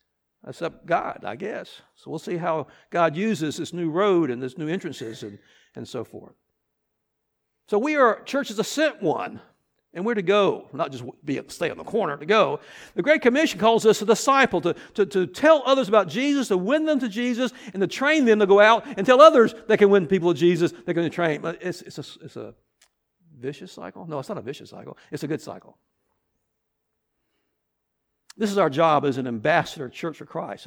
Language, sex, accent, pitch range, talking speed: English, male, American, 175-235 Hz, 210 wpm